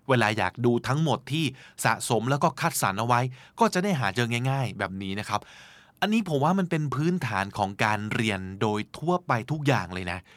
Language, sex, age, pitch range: Thai, male, 20-39, 110-160 Hz